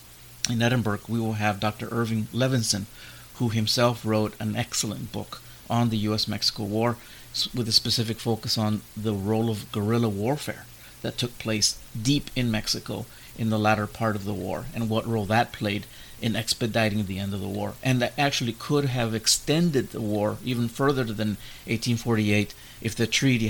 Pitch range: 105-120 Hz